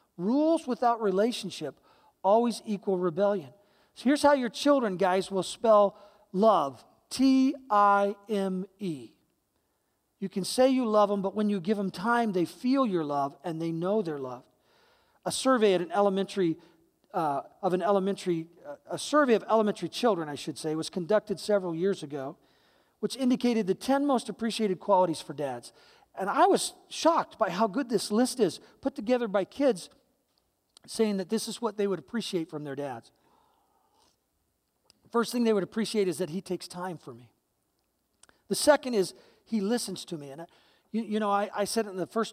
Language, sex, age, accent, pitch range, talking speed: English, male, 40-59, American, 175-230 Hz, 180 wpm